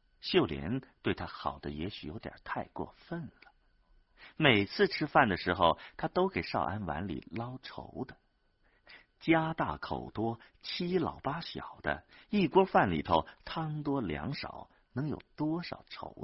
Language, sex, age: Chinese, male, 50-69